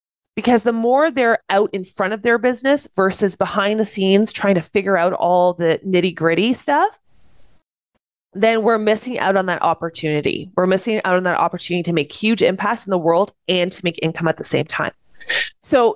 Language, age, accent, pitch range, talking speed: English, 20-39, American, 175-240 Hz, 195 wpm